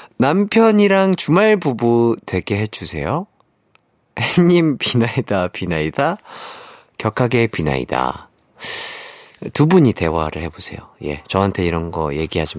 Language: Korean